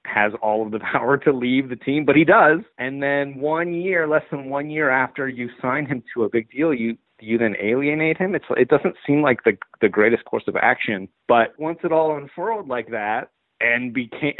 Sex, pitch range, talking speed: male, 110-145 Hz, 220 wpm